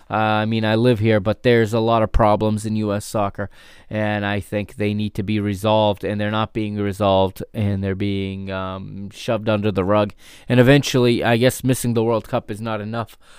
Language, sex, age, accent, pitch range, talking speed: English, male, 20-39, American, 105-130 Hz, 210 wpm